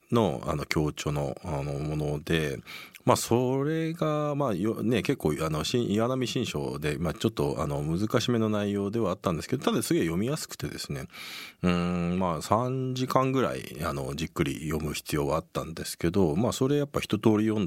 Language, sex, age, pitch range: Japanese, male, 40-59, 85-130 Hz